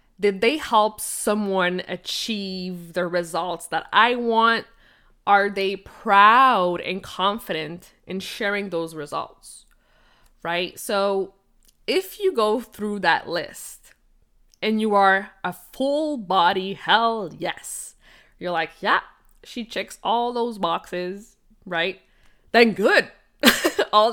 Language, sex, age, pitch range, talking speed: English, female, 20-39, 180-235 Hz, 115 wpm